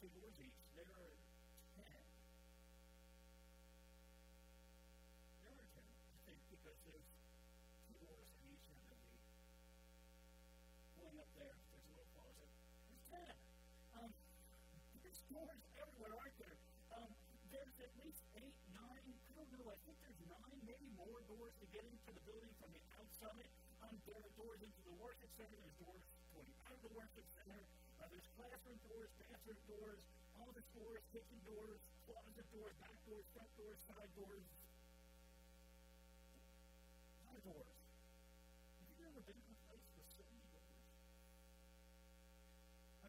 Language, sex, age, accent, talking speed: English, female, 50-69, American, 155 wpm